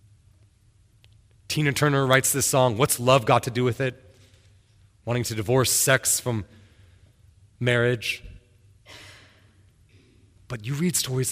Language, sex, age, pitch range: English, male, 30-49, 95-115 Hz